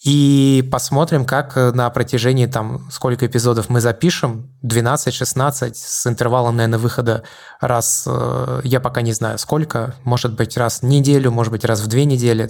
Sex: male